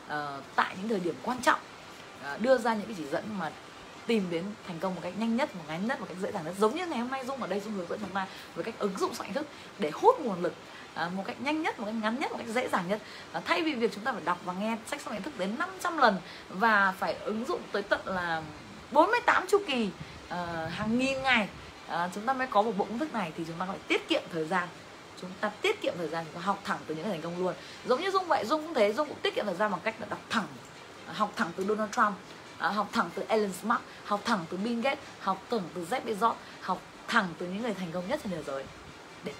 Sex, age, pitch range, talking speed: female, 20-39, 180-250 Hz, 275 wpm